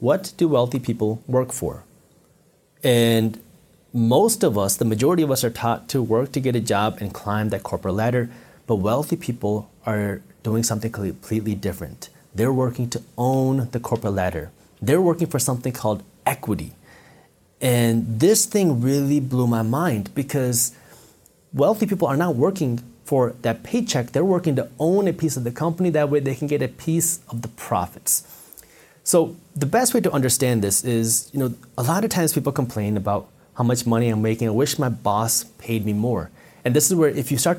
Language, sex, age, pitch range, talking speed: English, male, 30-49, 115-160 Hz, 190 wpm